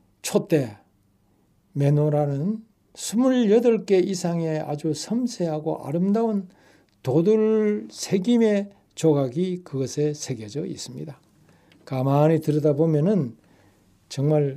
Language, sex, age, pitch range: Korean, male, 60-79, 145-225 Hz